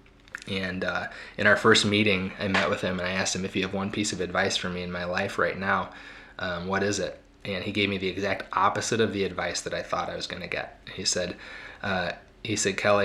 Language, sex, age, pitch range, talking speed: English, male, 20-39, 95-105 Hz, 260 wpm